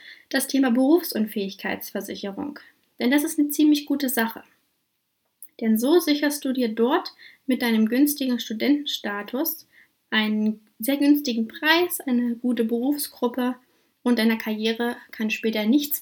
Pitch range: 225-290 Hz